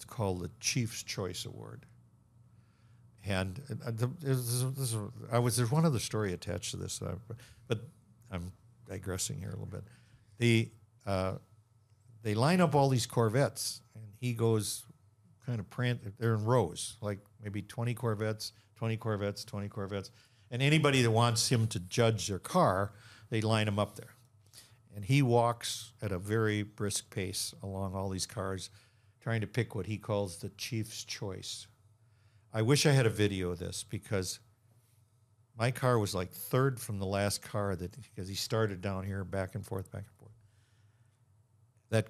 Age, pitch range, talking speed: 60-79, 100-120 Hz, 160 wpm